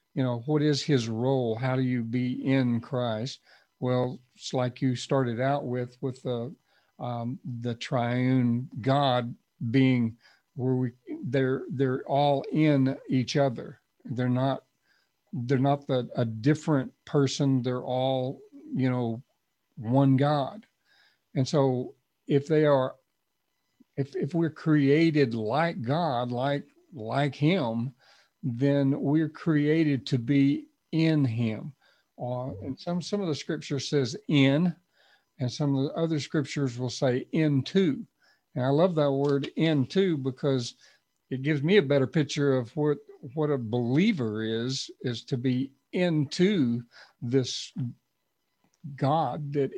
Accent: American